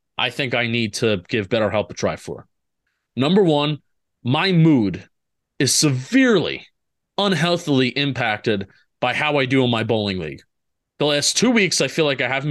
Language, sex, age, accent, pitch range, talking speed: English, male, 30-49, American, 130-185 Hz, 170 wpm